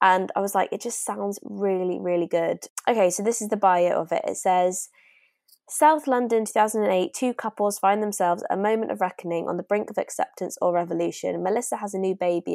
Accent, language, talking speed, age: British, English, 210 wpm, 20-39